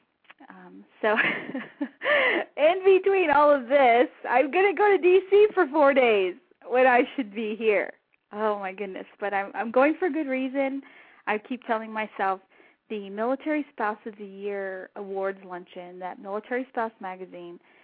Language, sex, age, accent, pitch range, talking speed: English, female, 30-49, American, 190-260 Hz, 160 wpm